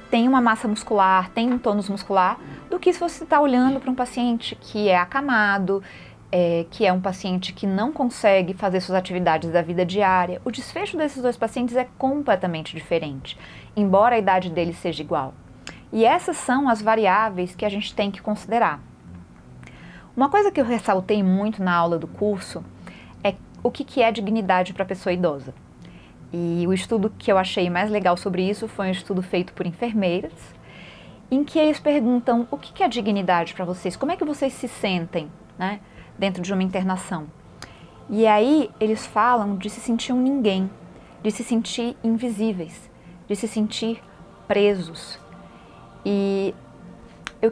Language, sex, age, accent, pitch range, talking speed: Portuguese, female, 30-49, Brazilian, 180-235 Hz, 170 wpm